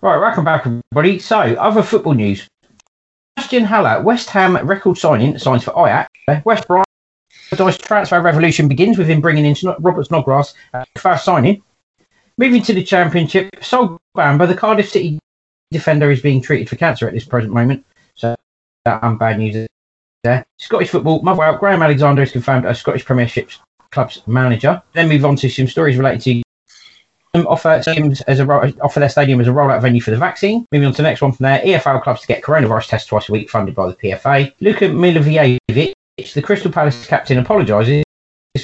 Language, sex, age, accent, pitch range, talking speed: English, male, 40-59, British, 125-180 Hz, 185 wpm